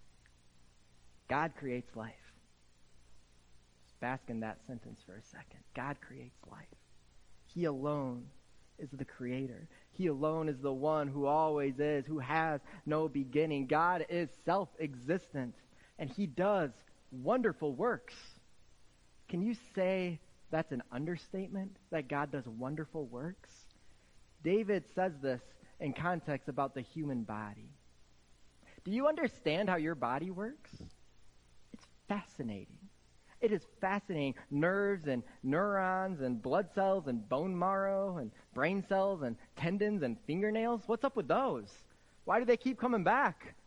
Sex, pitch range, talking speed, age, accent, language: male, 130-210 Hz, 130 wpm, 30-49, American, English